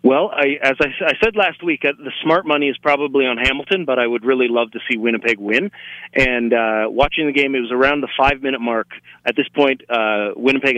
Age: 30-49